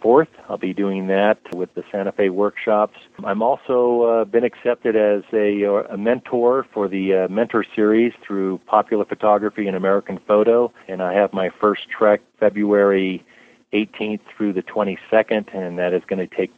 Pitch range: 95-110 Hz